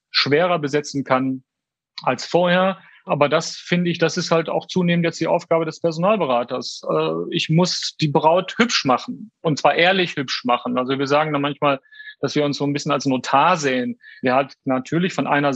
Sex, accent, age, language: male, German, 40-59, German